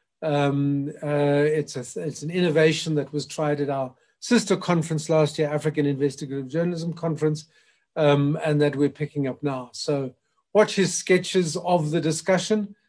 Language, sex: English, male